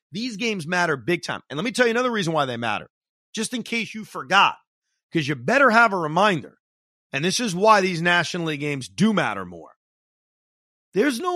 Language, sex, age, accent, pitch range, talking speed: English, male, 40-59, American, 155-220 Hz, 205 wpm